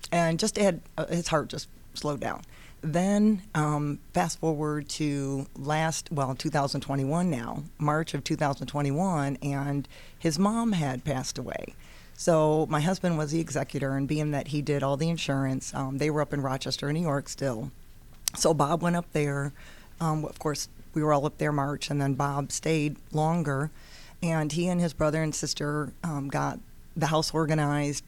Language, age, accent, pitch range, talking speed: English, 50-69, American, 140-170 Hz, 170 wpm